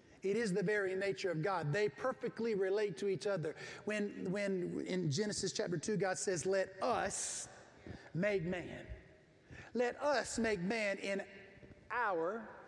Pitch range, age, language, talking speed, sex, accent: 190-235 Hz, 40-59, English, 145 wpm, male, American